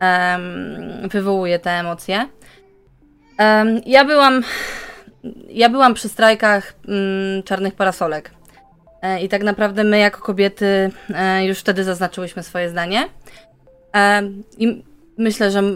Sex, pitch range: female, 185-215 Hz